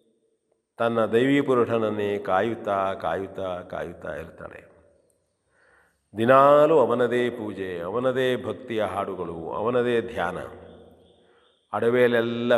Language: Kannada